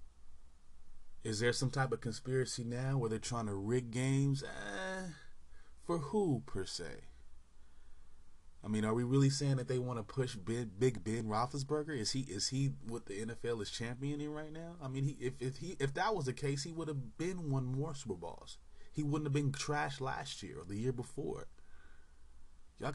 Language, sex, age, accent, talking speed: English, male, 20-39, American, 195 wpm